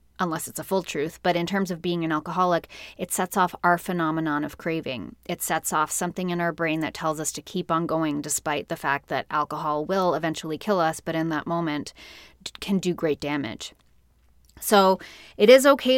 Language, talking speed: English, 205 wpm